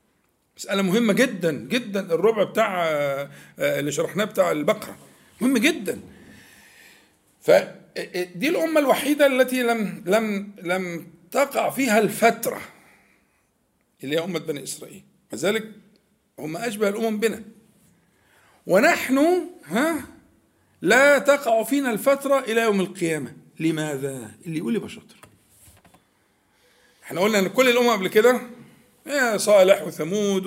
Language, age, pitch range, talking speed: Arabic, 50-69, 175-235 Hz, 110 wpm